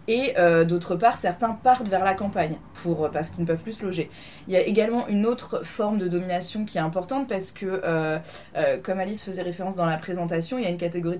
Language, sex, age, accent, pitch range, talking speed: French, female, 20-39, French, 170-225 Hz, 240 wpm